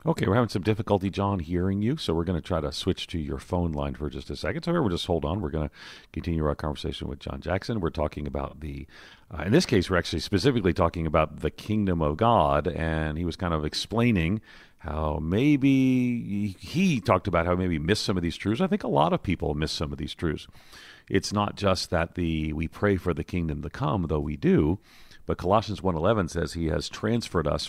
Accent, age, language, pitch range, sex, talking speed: American, 40-59, English, 80-105 Hz, male, 240 wpm